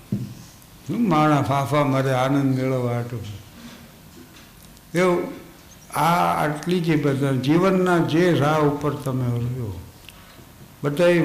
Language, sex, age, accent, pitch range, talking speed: Gujarati, male, 60-79, native, 130-160 Hz, 80 wpm